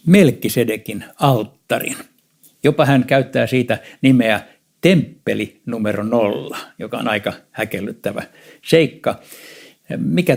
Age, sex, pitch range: 60-79, male, 110-145 Hz